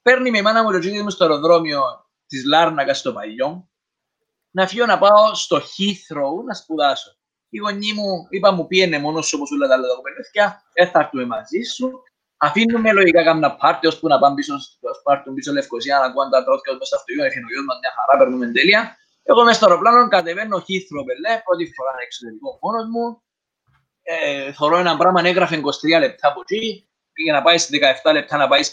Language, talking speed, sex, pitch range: Greek, 100 wpm, male, 150-230 Hz